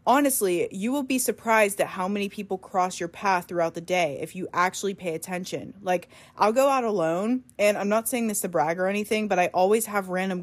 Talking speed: 225 wpm